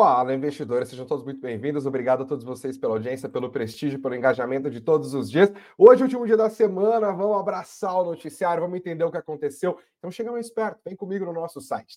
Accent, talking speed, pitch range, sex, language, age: Brazilian, 225 wpm, 140-180 Hz, male, Portuguese, 30-49